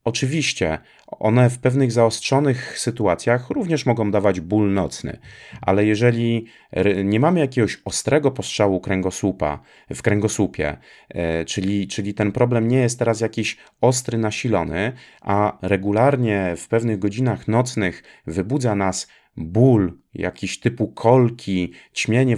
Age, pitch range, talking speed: 30-49, 105-135 Hz, 115 wpm